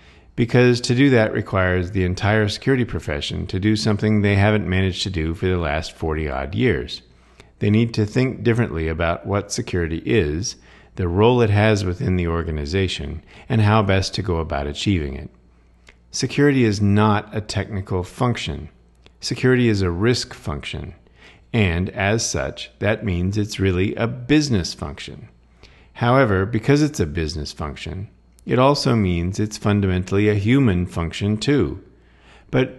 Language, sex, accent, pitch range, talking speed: English, male, American, 85-115 Hz, 155 wpm